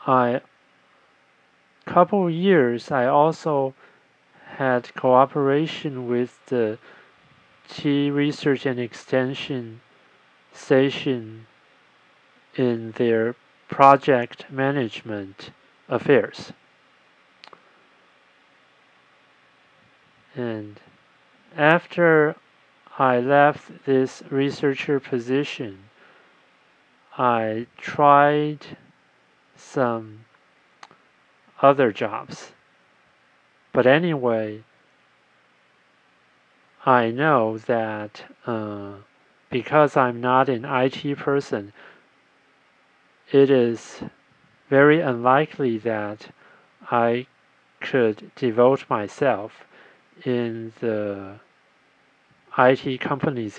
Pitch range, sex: 115-145 Hz, male